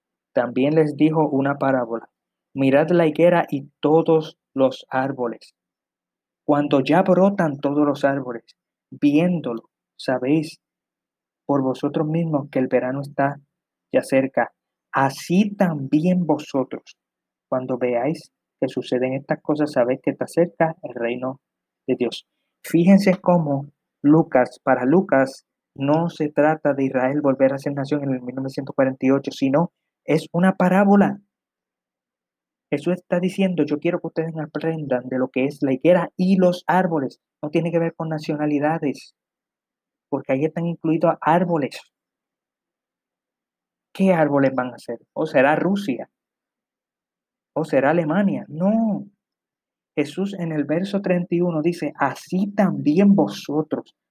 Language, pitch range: Spanish, 135-170 Hz